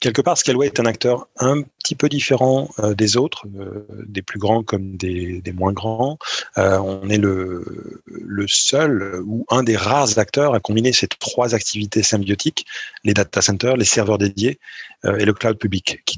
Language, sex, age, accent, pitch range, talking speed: French, male, 30-49, French, 100-120 Hz, 190 wpm